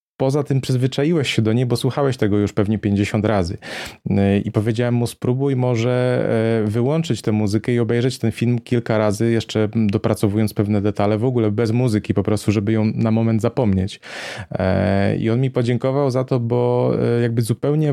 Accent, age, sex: native, 30-49, male